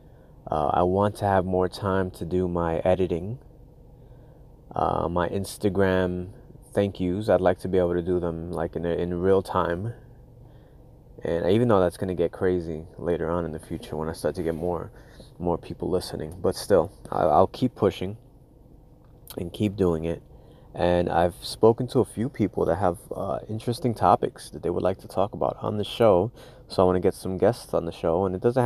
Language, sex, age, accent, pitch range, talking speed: English, male, 20-39, American, 90-115 Hz, 200 wpm